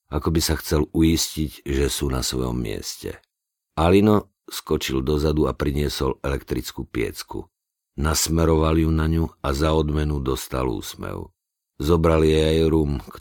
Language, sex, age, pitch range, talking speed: Slovak, male, 50-69, 70-80 Hz, 140 wpm